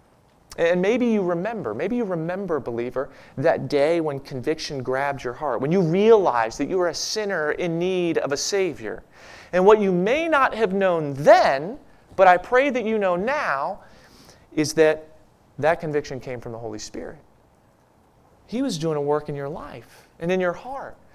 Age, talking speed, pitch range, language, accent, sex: 30-49, 180 wpm, 140-225 Hz, English, American, male